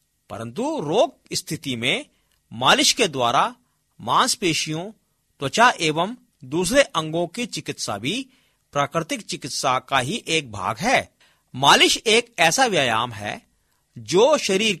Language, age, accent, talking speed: Hindi, 50-69, native, 120 wpm